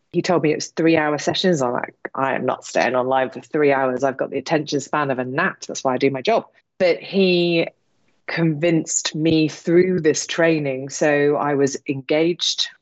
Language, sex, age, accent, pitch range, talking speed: English, female, 30-49, British, 145-175 Hz, 200 wpm